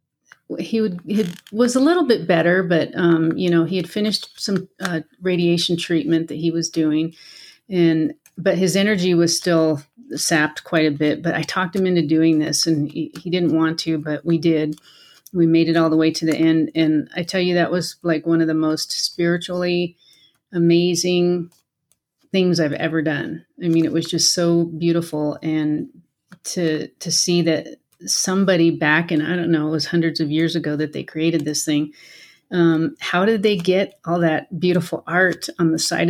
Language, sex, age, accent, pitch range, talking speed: English, female, 30-49, American, 155-175 Hz, 195 wpm